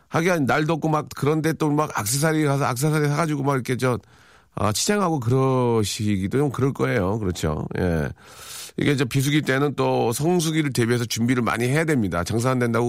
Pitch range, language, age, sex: 105-145 Hz, Korean, 40-59, male